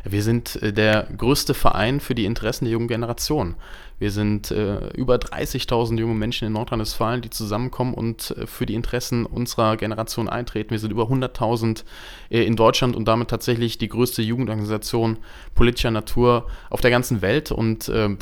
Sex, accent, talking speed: male, German, 165 wpm